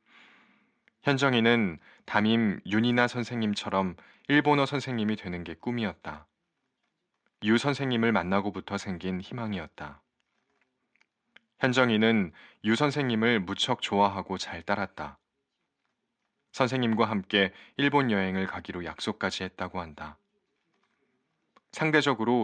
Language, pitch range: Korean, 95-125 Hz